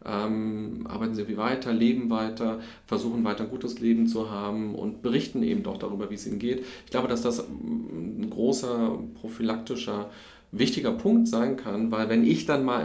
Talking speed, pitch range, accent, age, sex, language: 180 wpm, 110-145 Hz, German, 40-59, male, German